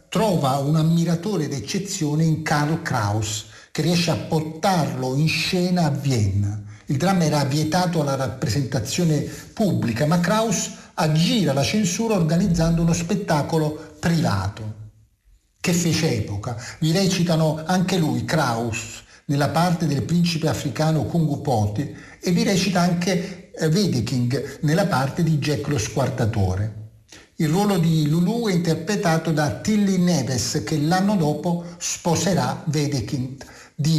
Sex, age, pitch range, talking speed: male, 50-69, 135-175 Hz, 130 wpm